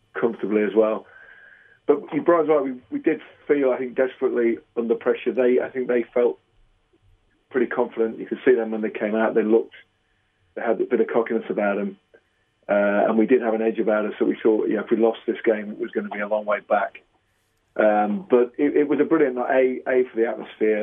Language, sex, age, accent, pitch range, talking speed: English, male, 40-59, British, 105-120 Hz, 230 wpm